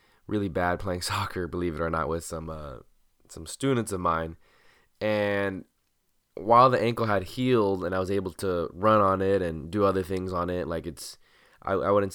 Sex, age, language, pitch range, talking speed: male, 20-39, English, 85-105 Hz, 200 wpm